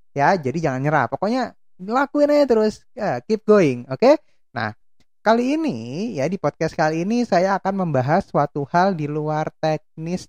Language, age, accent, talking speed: Indonesian, 20-39, native, 170 wpm